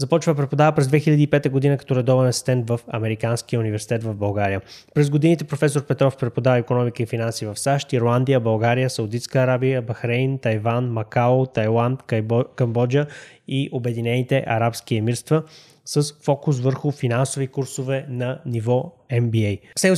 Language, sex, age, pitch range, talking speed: Bulgarian, male, 20-39, 120-140 Hz, 140 wpm